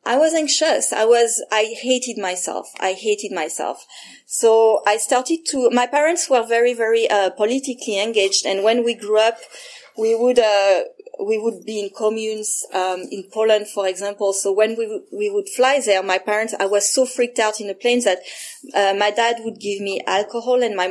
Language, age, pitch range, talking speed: English, 30-49, 200-260 Hz, 200 wpm